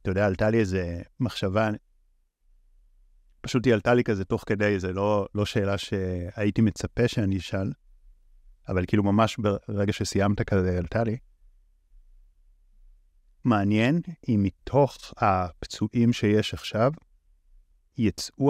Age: 30-49